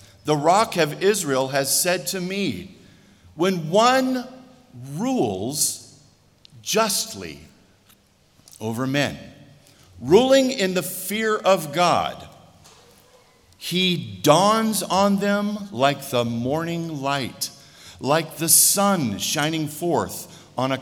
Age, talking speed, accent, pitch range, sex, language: 50-69, 100 wpm, American, 115-180 Hz, male, English